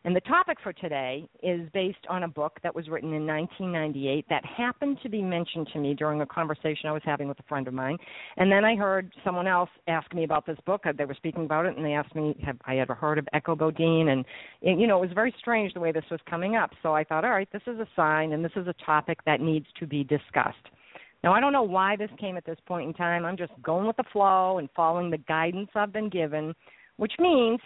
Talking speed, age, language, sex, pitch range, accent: 260 wpm, 50-69, English, female, 150-190 Hz, American